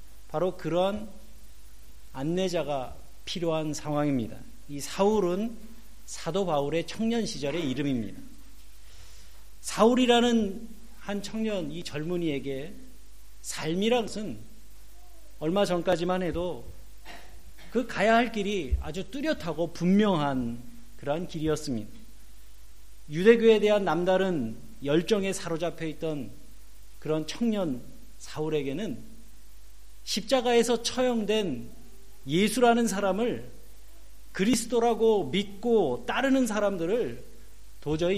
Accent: native